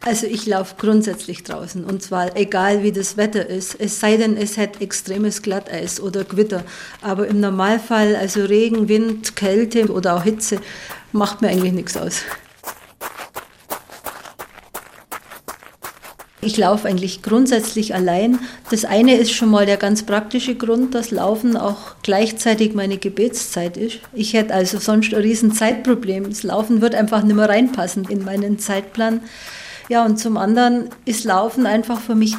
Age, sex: 50-69, female